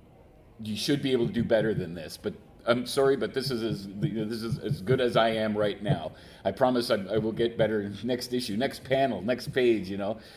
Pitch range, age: 105-130 Hz, 40-59